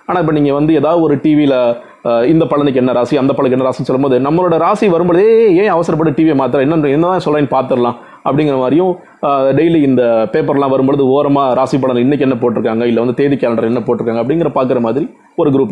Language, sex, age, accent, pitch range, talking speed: Tamil, male, 30-49, native, 130-180 Hz, 185 wpm